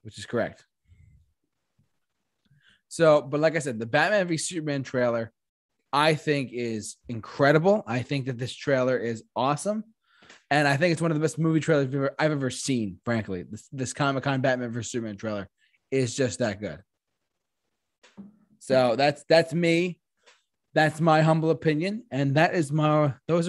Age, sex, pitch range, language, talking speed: 20-39, male, 125-165 Hz, English, 165 wpm